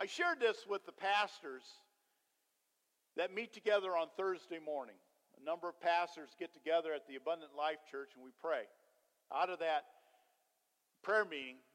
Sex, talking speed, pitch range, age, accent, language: male, 160 wpm, 140-190 Hz, 50-69, American, English